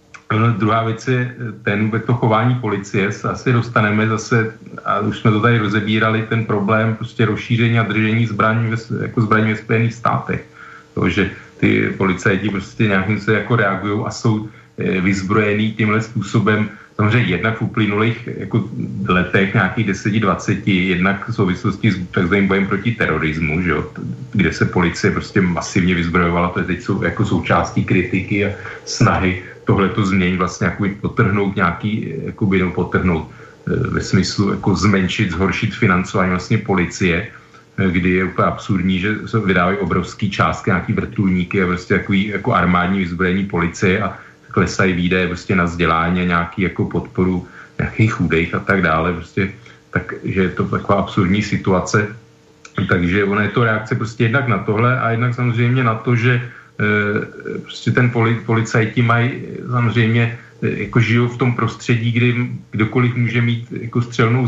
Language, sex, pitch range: Slovak, male, 95-115 Hz